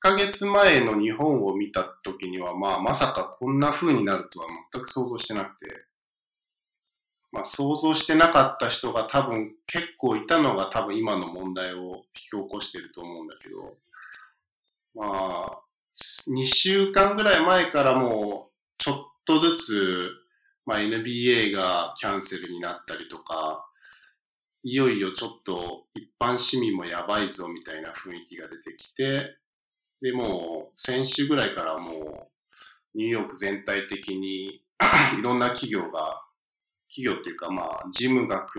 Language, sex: Japanese, male